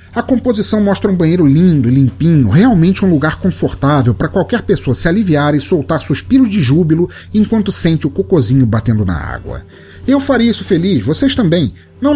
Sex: male